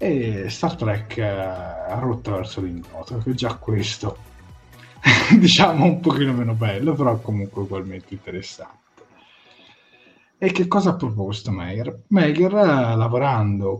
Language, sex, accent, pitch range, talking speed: Italian, male, native, 100-135 Hz, 130 wpm